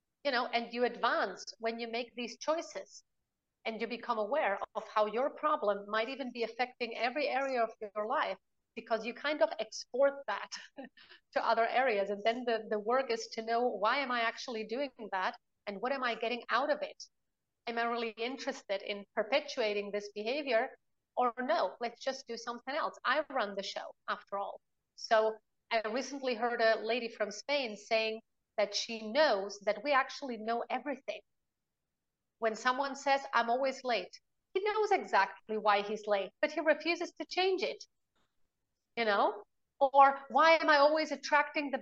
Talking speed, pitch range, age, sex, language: 175 wpm, 225-280 Hz, 30-49, female, English